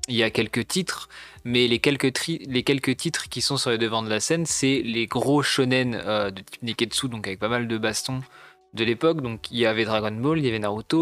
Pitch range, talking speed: 110-135 Hz, 230 wpm